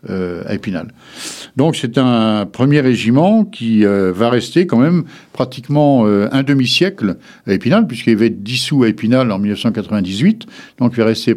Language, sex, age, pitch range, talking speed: French, male, 60-79, 100-130 Hz, 165 wpm